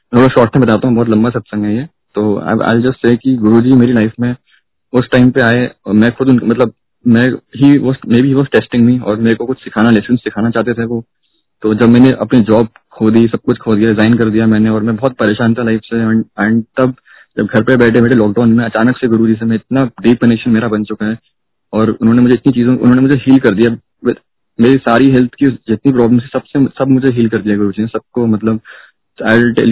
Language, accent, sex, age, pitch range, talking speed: Hindi, native, male, 20-39, 110-125 Hz, 200 wpm